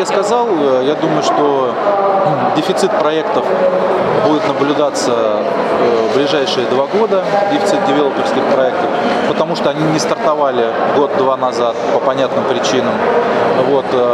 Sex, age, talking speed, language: male, 20-39, 115 wpm, Russian